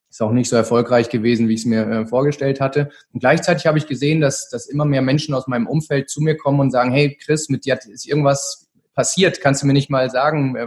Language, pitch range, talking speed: German, 125-145 Hz, 240 wpm